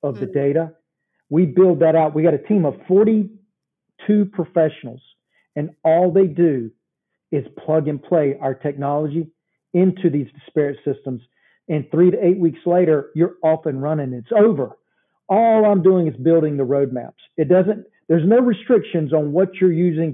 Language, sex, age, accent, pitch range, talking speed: English, male, 40-59, American, 150-180 Hz, 165 wpm